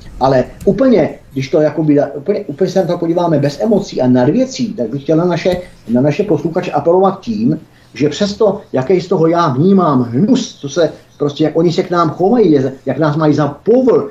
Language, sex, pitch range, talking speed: Czech, male, 145-185 Hz, 205 wpm